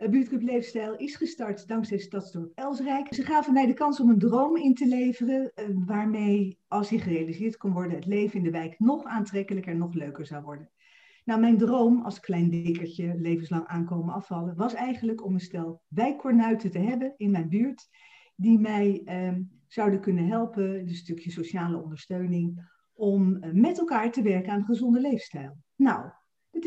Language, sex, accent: Dutch, female, Dutch